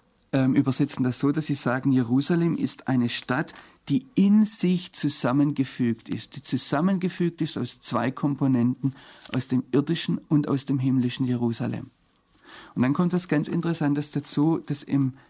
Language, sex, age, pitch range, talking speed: German, male, 40-59, 125-145 Hz, 150 wpm